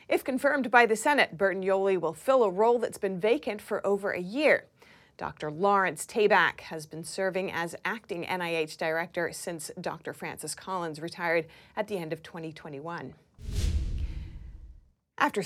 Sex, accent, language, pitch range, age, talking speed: female, American, English, 175-235 Hz, 40-59, 150 wpm